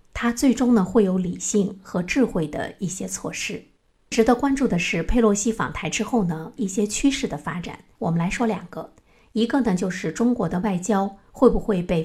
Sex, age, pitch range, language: female, 50-69, 170-230 Hz, Chinese